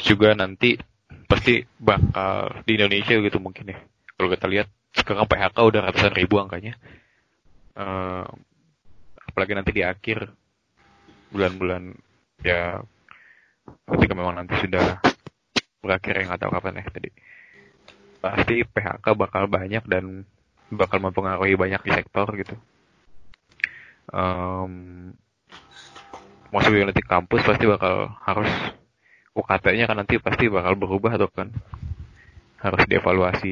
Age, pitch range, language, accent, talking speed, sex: 20-39, 95-105 Hz, Indonesian, native, 120 wpm, male